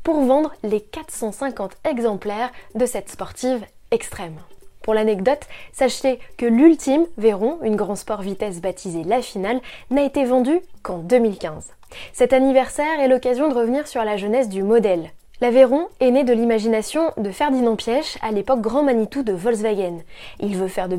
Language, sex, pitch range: French, female, 205-270 Hz